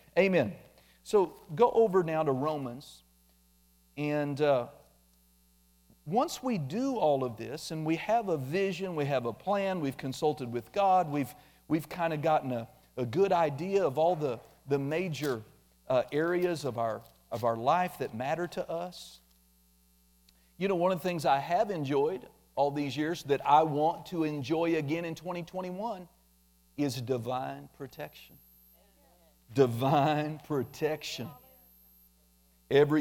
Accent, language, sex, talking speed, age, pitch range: American, English, male, 145 wpm, 50-69, 115-180 Hz